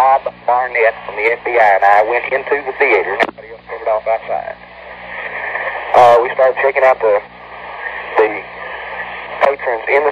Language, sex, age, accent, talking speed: English, male, 40-59, American, 155 wpm